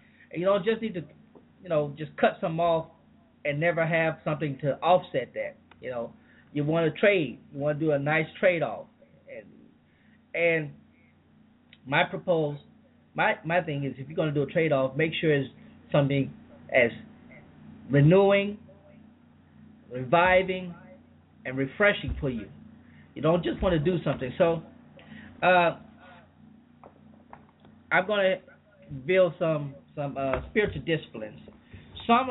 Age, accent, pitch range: 30-49, American, 145-180 Hz